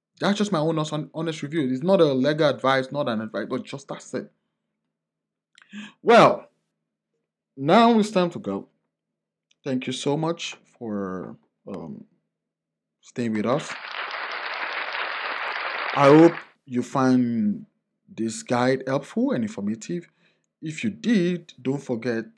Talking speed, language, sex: 130 wpm, English, male